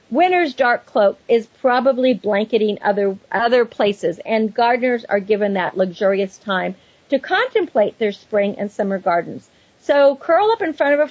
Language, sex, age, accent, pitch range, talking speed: English, female, 50-69, American, 205-270 Hz, 160 wpm